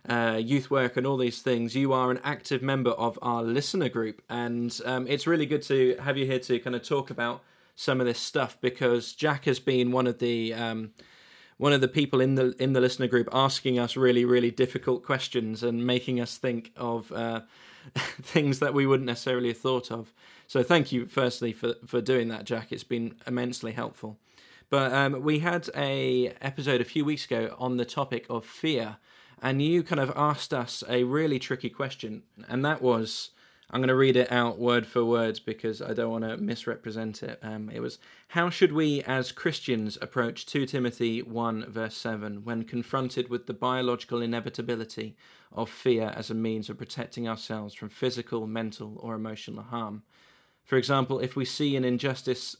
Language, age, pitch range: English, 20-39, 115-130 Hz